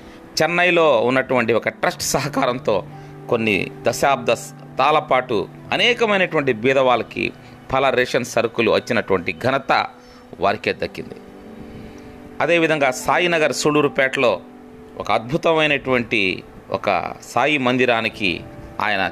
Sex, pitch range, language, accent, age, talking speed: male, 105-145 Hz, Telugu, native, 30-49, 80 wpm